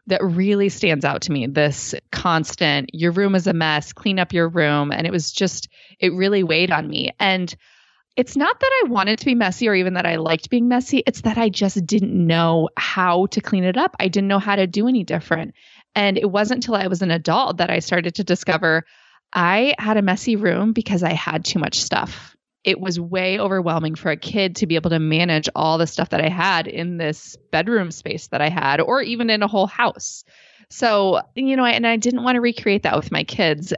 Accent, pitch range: American, 160-205 Hz